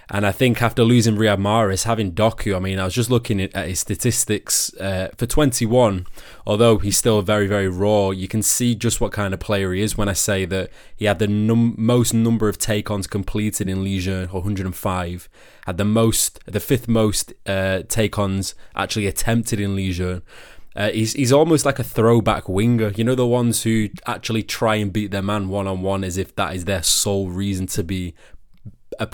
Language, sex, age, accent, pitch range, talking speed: English, male, 20-39, British, 95-110 Hz, 195 wpm